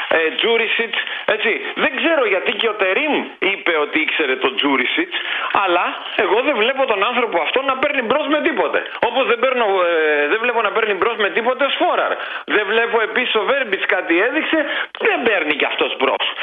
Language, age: Greek, 40-59